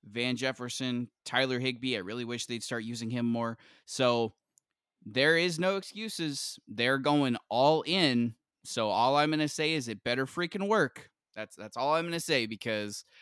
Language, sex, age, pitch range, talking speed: English, male, 20-39, 110-135 Hz, 180 wpm